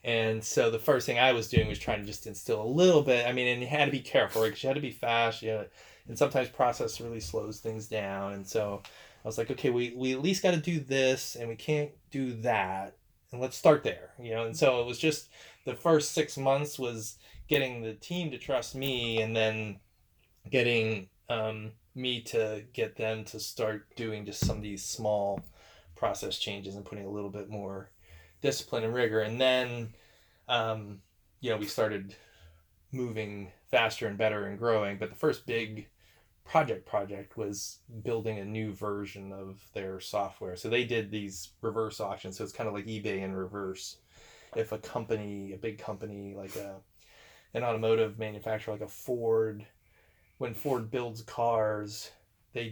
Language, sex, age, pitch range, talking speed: English, male, 20-39, 100-120 Hz, 190 wpm